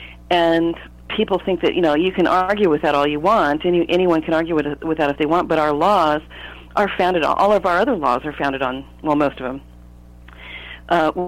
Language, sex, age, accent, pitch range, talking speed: English, female, 40-59, American, 105-175 Hz, 230 wpm